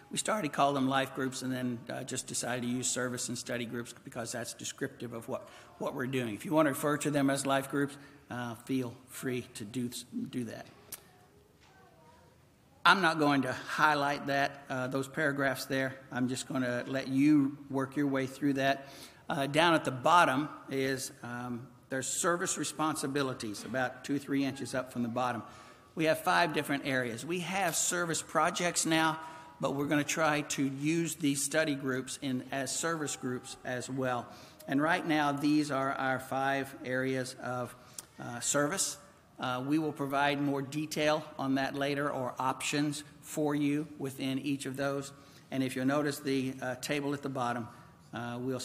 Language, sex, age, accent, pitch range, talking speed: English, male, 60-79, American, 125-145 Hz, 185 wpm